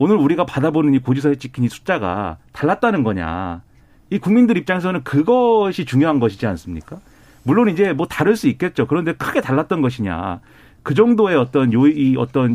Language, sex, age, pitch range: Korean, male, 40-59, 115-165 Hz